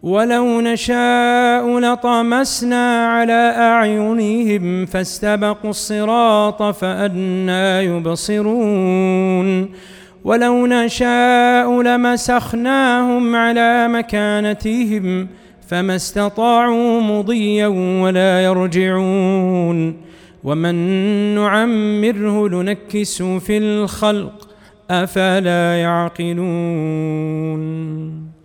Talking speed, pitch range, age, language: 55 wpm, 160-210 Hz, 30-49, Arabic